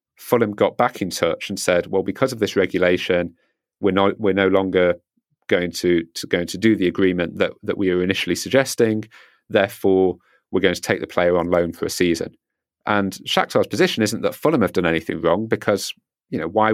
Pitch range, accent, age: 90-110 Hz, British, 40-59